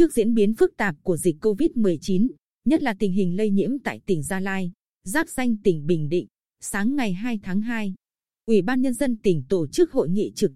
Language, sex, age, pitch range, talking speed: Vietnamese, female, 20-39, 190-245 Hz, 215 wpm